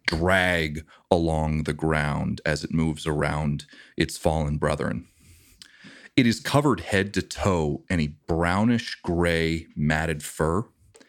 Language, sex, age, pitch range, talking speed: English, male, 30-49, 80-100 Hz, 125 wpm